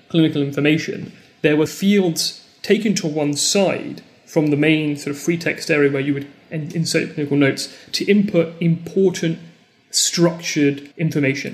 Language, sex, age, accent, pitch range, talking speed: English, male, 30-49, British, 145-180 Hz, 145 wpm